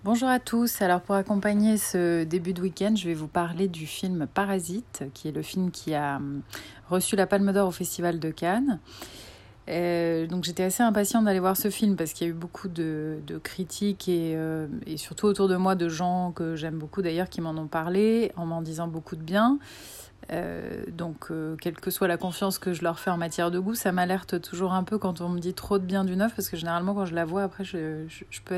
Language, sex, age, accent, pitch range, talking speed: French, female, 30-49, French, 170-195 Hz, 240 wpm